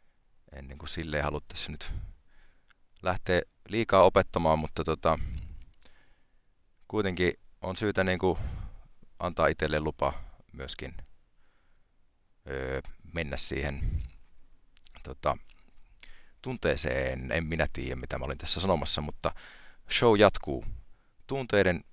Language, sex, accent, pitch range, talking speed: Finnish, male, native, 75-90 Hz, 100 wpm